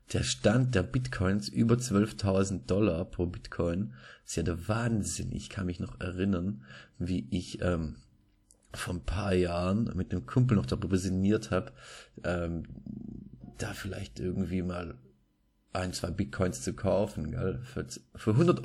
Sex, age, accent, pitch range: male, 30-49, German, 90-110 Hz